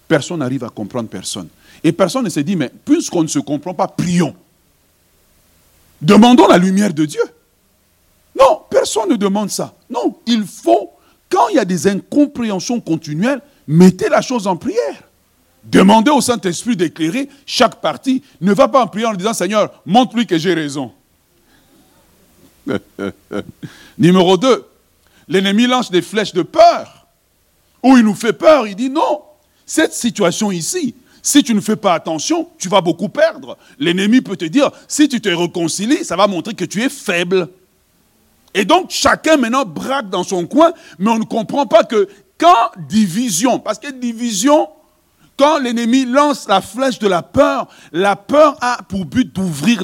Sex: male